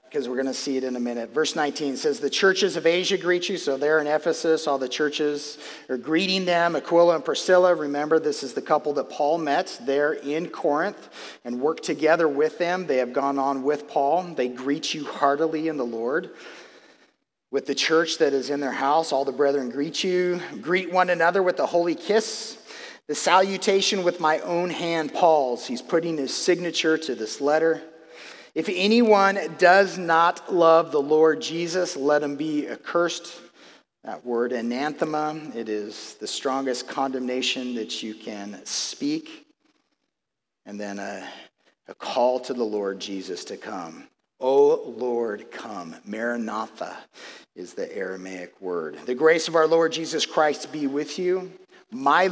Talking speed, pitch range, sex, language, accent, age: 170 wpm, 135-175 Hz, male, English, American, 40-59